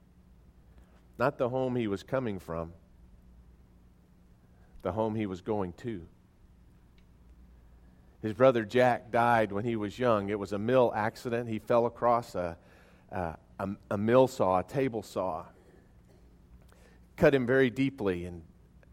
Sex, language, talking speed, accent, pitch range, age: male, English, 135 wpm, American, 85-120 Hz, 40-59